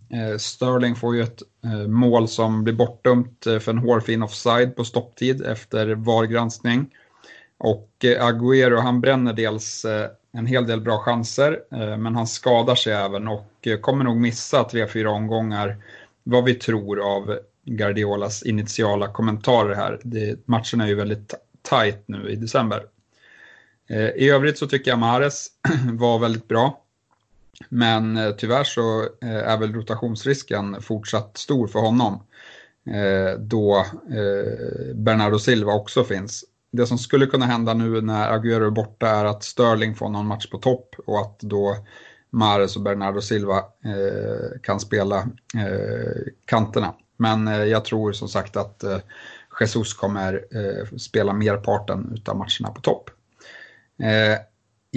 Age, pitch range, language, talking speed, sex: 30-49, 105-120 Hz, Swedish, 140 wpm, male